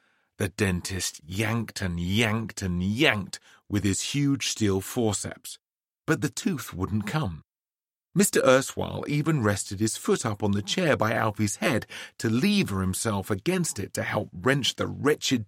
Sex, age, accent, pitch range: male, 30-49, British, 95-125 Hz